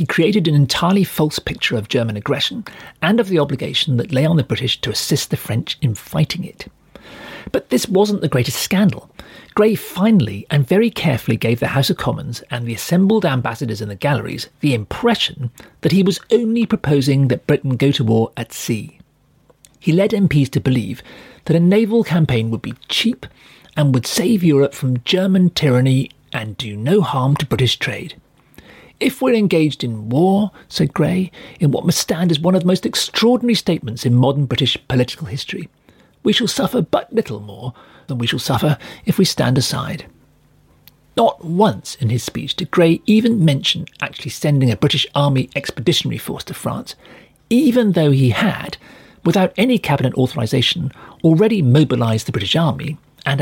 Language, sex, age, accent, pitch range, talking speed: English, male, 40-59, British, 130-185 Hz, 175 wpm